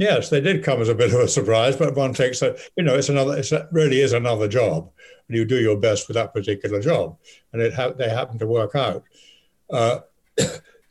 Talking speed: 225 wpm